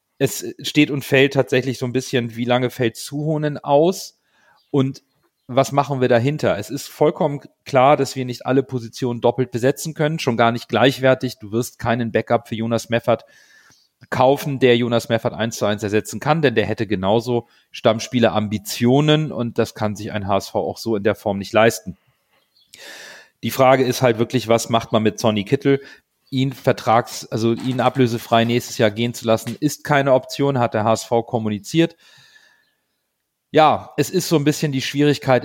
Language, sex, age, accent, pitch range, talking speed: German, male, 40-59, German, 115-140 Hz, 175 wpm